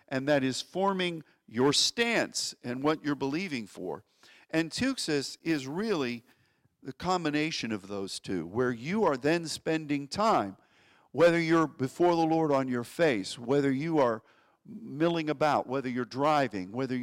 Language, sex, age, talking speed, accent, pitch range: English, male, 50-69, 150 wpm, American, 125-180 Hz